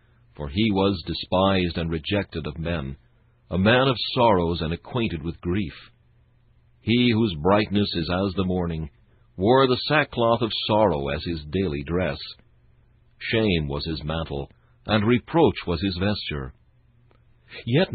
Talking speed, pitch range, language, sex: 140 wpm, 85-115 Hz, English, male